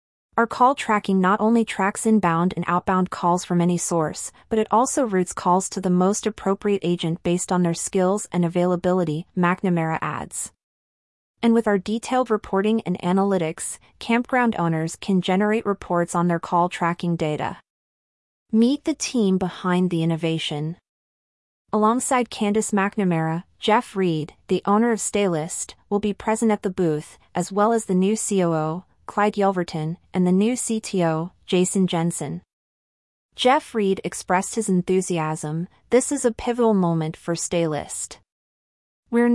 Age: 30-49